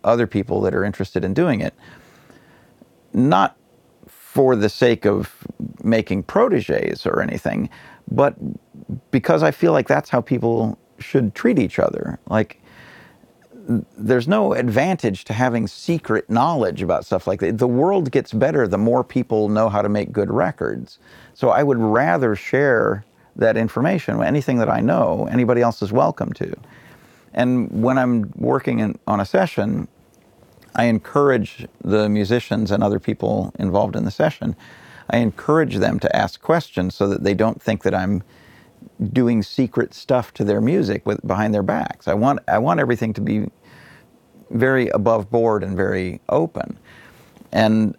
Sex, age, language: male, 40-59, English